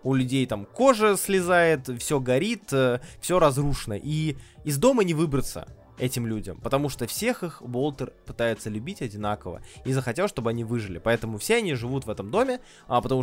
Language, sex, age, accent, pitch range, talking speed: Russian, male, 20-39, native, 125-185 Hz, 170 wpm